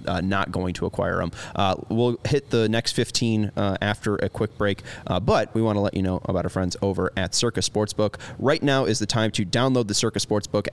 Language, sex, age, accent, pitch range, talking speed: English, male, 20-39, American, 95-115 Hz, 235 wpm